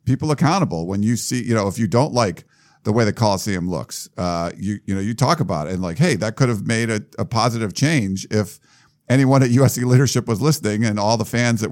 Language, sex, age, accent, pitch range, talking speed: English, male, 50-69, American, 105-130 Hz, 240 wpm